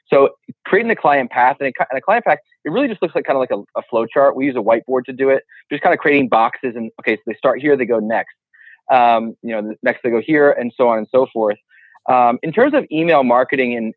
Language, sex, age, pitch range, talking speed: English, male, 30-49, 115-135 Hz, 275 wpm